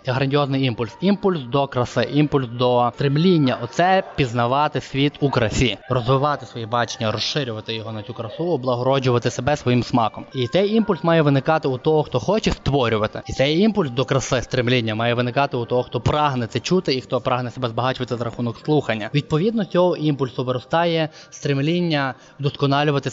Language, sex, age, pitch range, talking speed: Ukrainian, male, 20-39, 120-150 Hz, 165 wpm